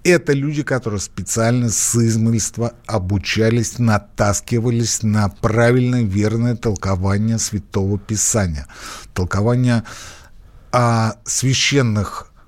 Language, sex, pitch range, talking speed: Russian, male, 105-150 Hz, 80 wpm